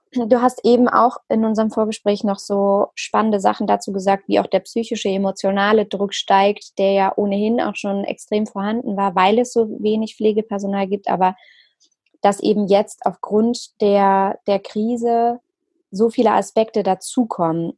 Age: 20-39